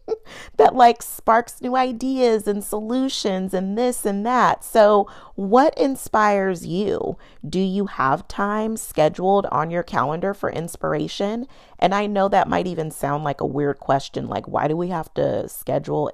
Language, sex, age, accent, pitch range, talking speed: English, female, 30-49, American, 160-220 Hz, 160 wpm